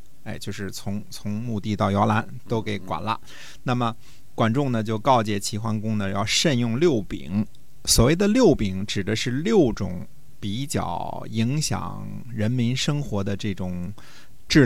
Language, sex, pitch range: Chinese, male, 100-130 Hz